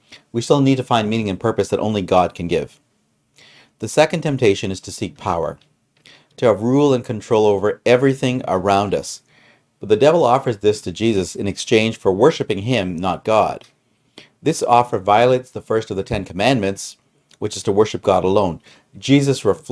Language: English